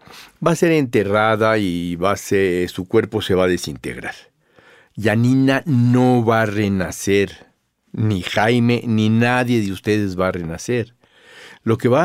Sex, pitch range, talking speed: male, 100-125 Hz, 140 wpm